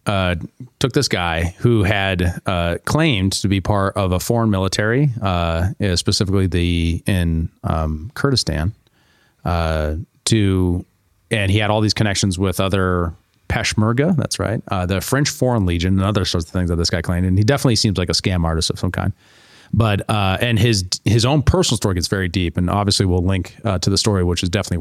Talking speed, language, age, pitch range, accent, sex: 195 wpm, English, 30-49, 95-115 Hz, American, male